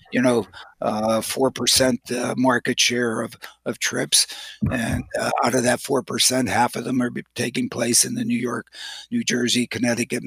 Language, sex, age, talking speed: English, male, 50-69, 180 wpm